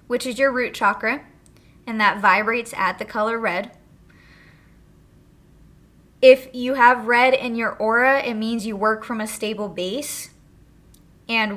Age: 20-39